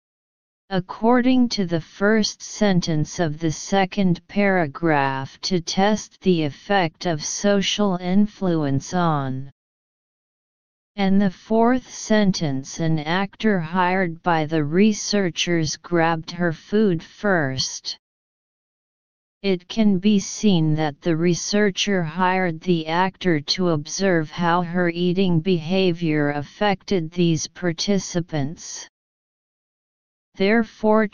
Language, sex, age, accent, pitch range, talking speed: English, female, 40-59, American, 160-200 Hz, 100 wpm